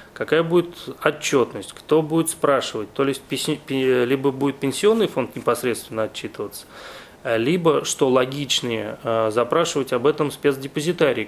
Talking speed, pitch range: 110 wpm, 115-150 Hz